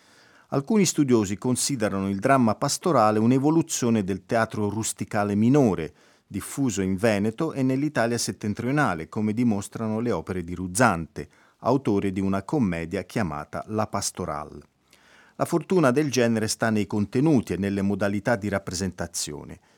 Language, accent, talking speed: Italian, native, 125 wpm